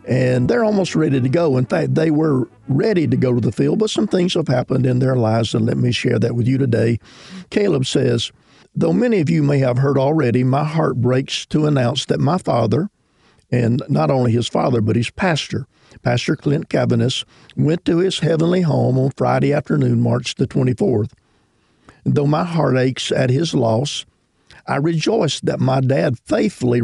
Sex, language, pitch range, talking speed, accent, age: male, English, 120-155 Hz, 190 wpm, American, 50-69